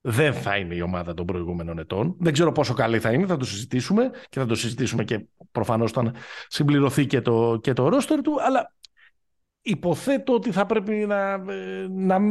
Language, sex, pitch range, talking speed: Greek, male, 115-185 Hz, 175 wpm